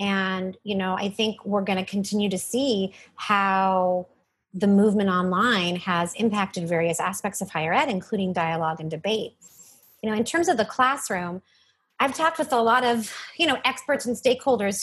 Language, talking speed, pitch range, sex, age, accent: English, 180 wpm, 185-235 Hz, female, 30-49, American